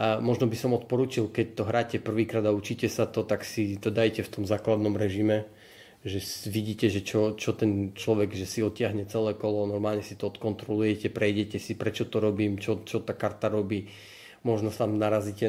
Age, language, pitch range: 30-49, Slovak, 105-115 Hz